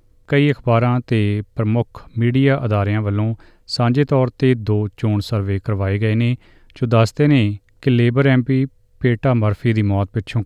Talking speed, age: 155 wpm, 30-49